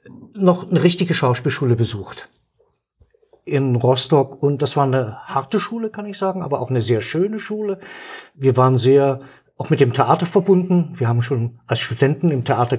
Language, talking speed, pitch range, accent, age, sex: German, 175 wpm, 145-190 Hz, German, 50-69, male